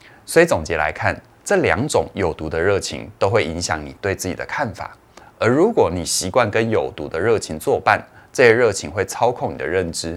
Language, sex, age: Chinese, male, 20-39